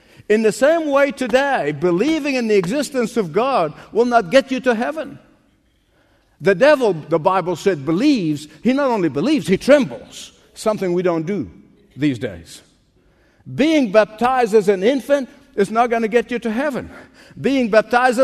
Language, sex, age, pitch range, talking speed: English, male, 60-79, 210-270 Hz, 165 wpm